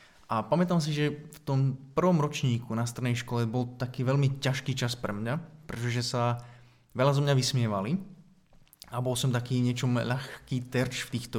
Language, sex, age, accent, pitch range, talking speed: Czech, male, 20-39, native, 120-140 Hz, 175 wpm